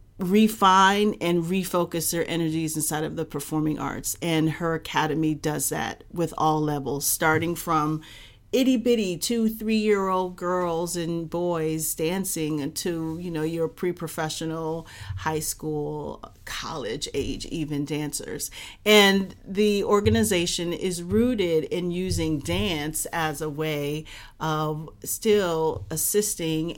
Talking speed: 115 wpm